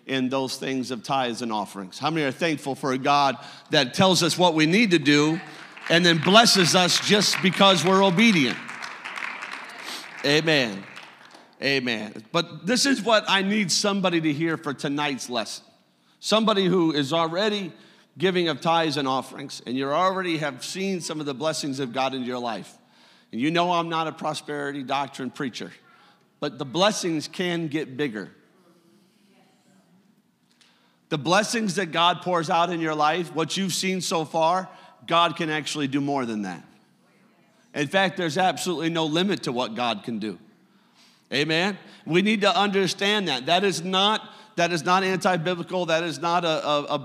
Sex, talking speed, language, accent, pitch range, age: male, 170 wpm, English, American, 145-185 Hz, 50-69